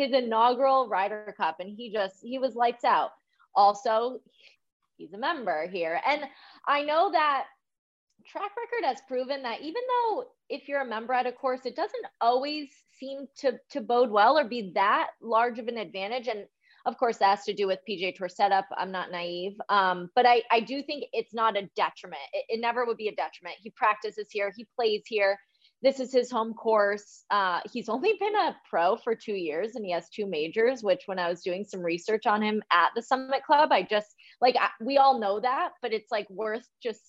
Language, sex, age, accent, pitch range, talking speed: English, female, 20-39, American, 195-270 Hz, 210 wpm